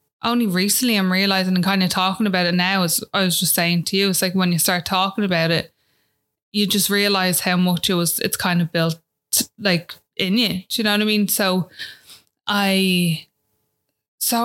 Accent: Irish